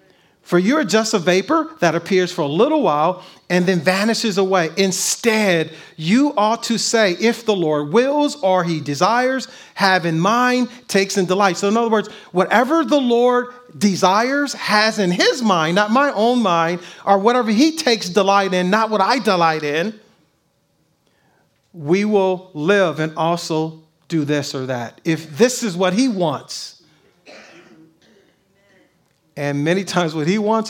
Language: English